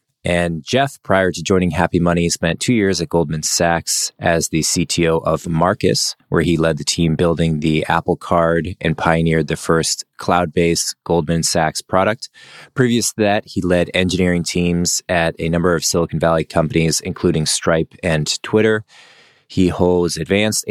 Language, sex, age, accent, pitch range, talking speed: English, male, 20-39, American, 80-100 Hz, 160 wpm